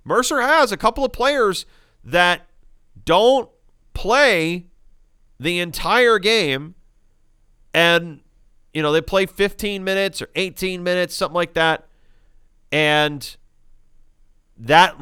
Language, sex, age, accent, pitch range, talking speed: English, male, 40-59, American, 110-170 Hz, 110 wpm